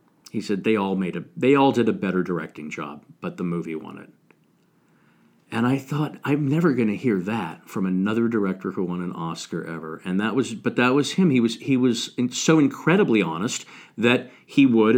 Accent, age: American, 50-69